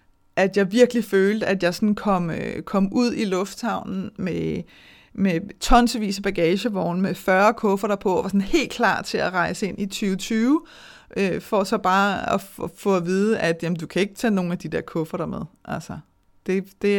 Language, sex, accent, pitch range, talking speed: Danish, female, native, 170-200 Hz, 190 wpm